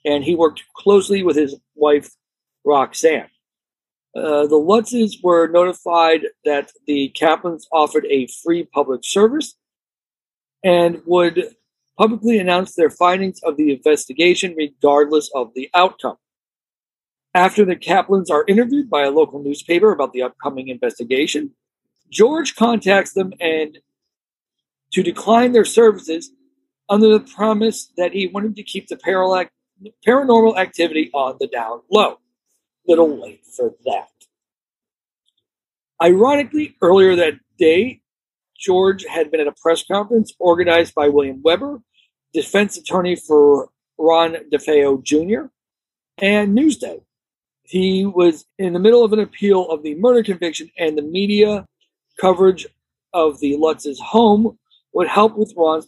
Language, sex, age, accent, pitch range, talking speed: English, male, 50-69, American, 150-215 Hz, 130 wpm